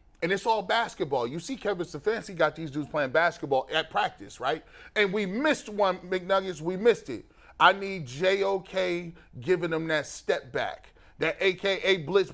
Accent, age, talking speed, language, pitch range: American, 30-49, 175 wpm, English, 160-210 Hz